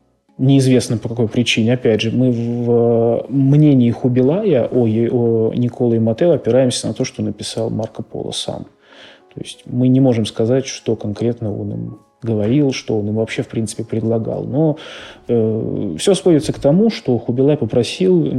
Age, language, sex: 20-39, Russian, male